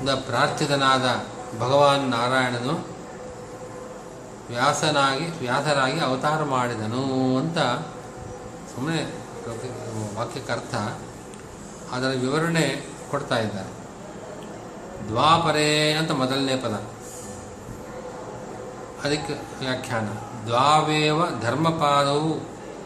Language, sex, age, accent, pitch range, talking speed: Kannada, male, 30-49, native, 125-150 Hz, 60 wpm